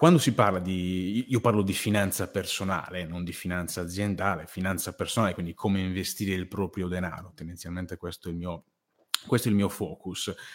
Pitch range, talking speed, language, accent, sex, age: 95-115 Hz, 170 wpm, Italian, native, male, 30-49